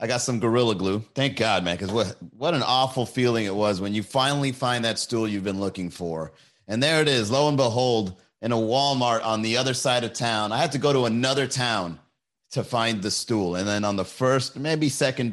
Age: 30-49